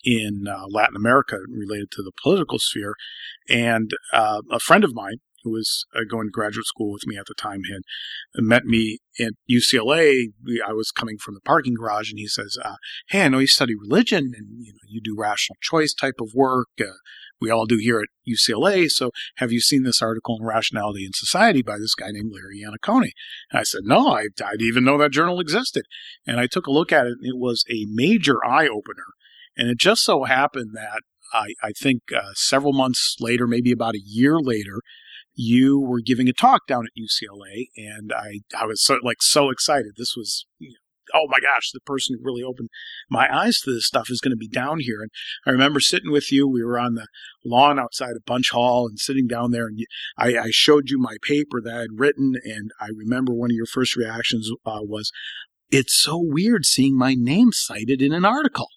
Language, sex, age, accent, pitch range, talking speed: English, male, 40-59, American, 110-135 Hz, 215 wpm